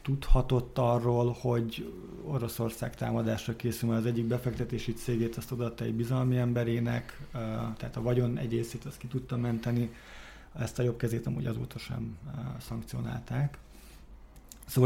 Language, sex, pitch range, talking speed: Hungarian, male, 120-135 Hz, 125 wpm